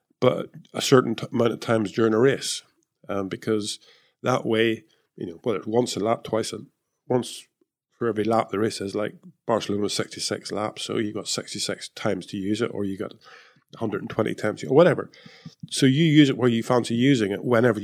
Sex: male